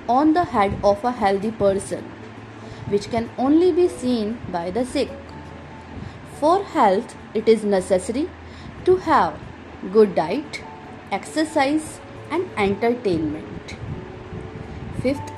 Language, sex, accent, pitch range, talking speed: Hindi, female, native, 200-300 Hz, 110 wpm